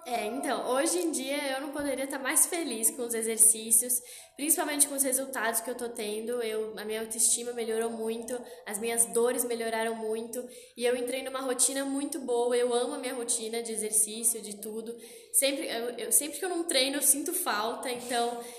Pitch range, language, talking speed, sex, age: 220-265 Hz, Portuguese, 195 wpm, female, 10-29